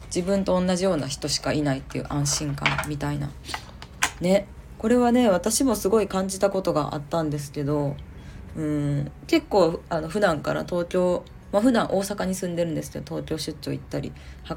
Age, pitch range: 20-39, 145-205 Hz